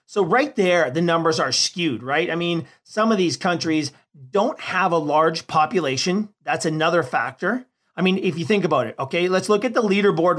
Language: English